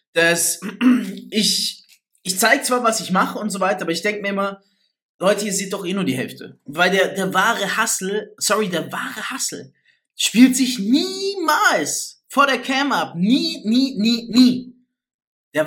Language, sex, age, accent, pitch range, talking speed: German, male, 20-39, German, 180-235 Hz, 170 wpm